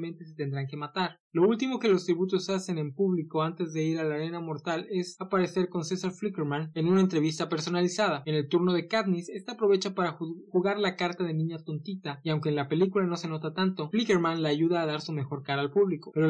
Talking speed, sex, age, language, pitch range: 230 wpm, male, 20-39, Spanish, 155-185 Hz